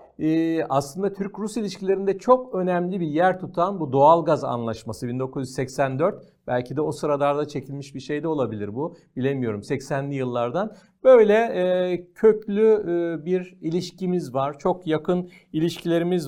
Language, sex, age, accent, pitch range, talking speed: Turkish, male, 50-69, native, 135-180 Hz, 120 wpm